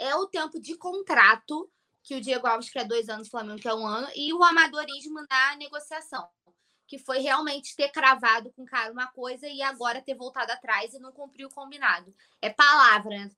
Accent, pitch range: Brazilian, 240-300 Hz